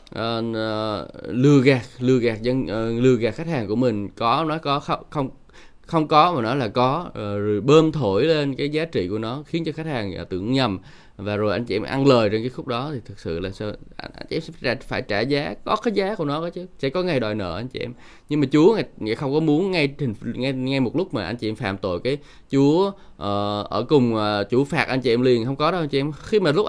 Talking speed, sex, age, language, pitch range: 260 wpm, male, 20-39, Vietnamese, 110-150 Hz